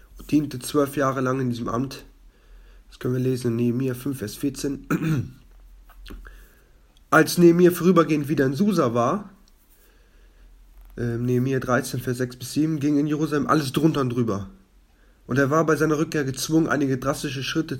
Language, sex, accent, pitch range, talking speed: German, male, German, 125-150 Hz, 150 wpm